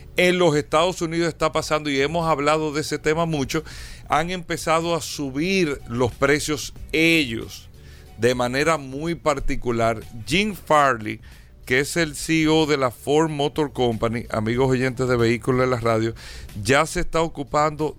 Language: Spanish